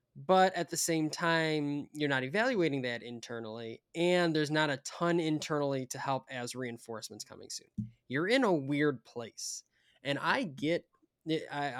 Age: 20-39